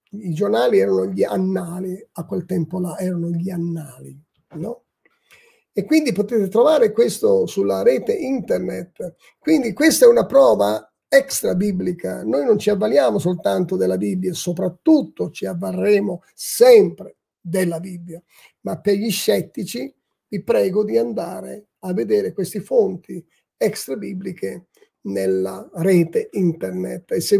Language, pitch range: Italian, 170-235 Hz